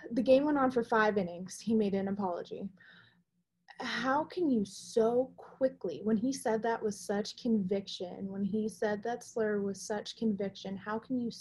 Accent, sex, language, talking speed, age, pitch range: American, female, English, 180 wpm, 20-39, 195-220 Hz